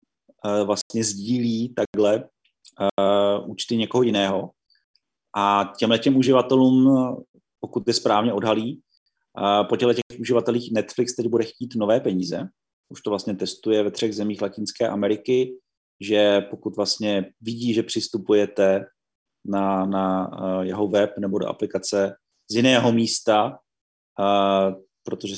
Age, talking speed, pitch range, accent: 30-49, 130 wpm, 100-120 Hz, native